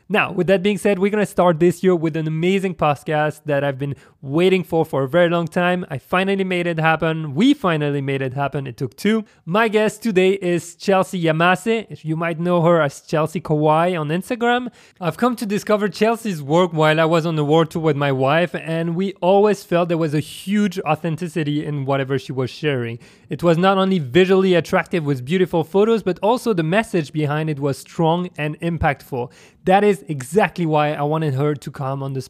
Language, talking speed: English, 210 wpm